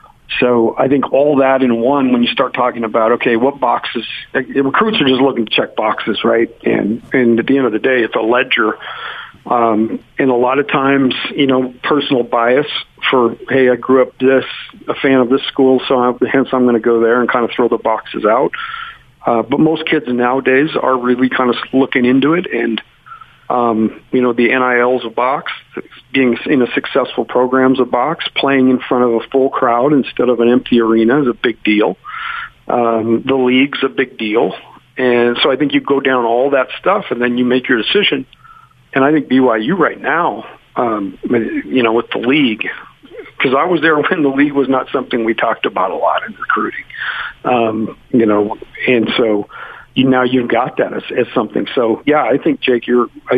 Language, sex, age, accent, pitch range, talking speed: English, male, 40-59, American, 120-135 Hz, 205 wpm